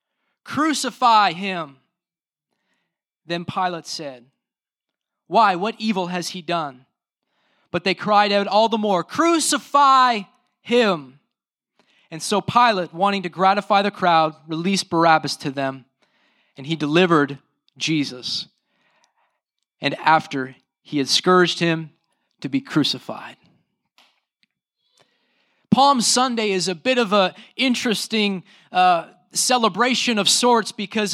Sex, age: male, 20-39